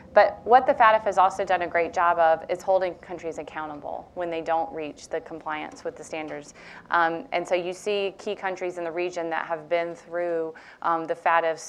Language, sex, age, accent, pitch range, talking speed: English, female, 30-49, American, 160-185 Hz, 210 wpm